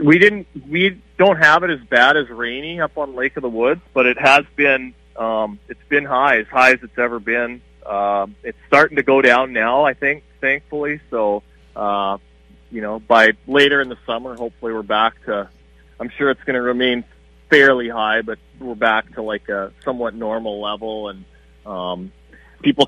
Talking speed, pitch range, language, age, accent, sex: 190 wpm, 105-135 Hz, English, 30-49, American, male